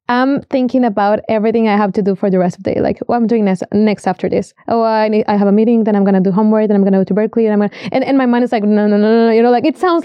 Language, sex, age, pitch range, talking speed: English, female, 20-39, 205-255 Hz, 350 wpm